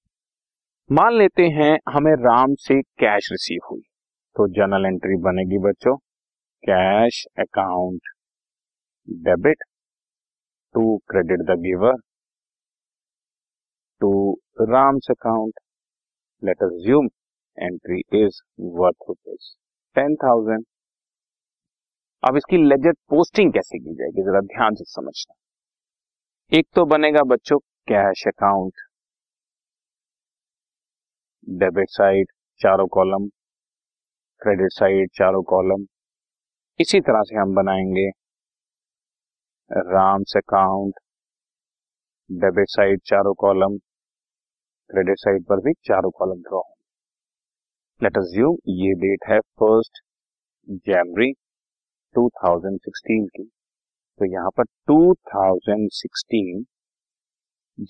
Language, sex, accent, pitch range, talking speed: Hindi, male, native, 95-145 Hz, 90 wpm